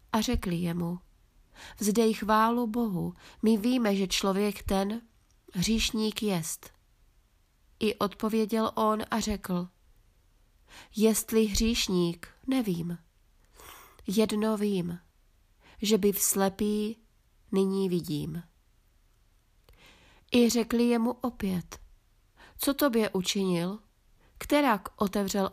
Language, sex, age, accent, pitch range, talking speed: Czech, female, 30-49, native, 180-225 Hz, 90 wpm